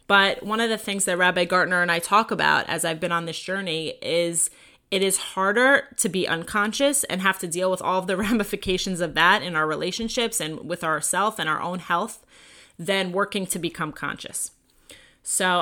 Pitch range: 170-210 Hz